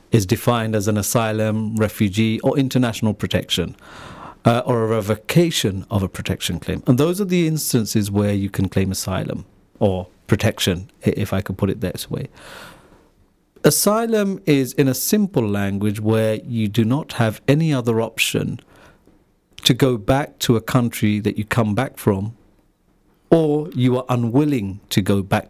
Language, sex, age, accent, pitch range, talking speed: English, male, 50-69, British, 105-135 Hz, 160 wpm